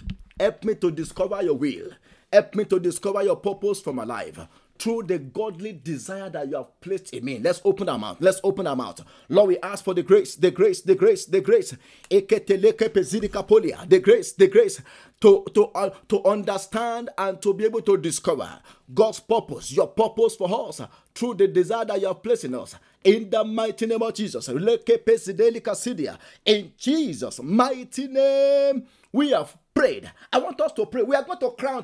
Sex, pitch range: male, 195-255 Hz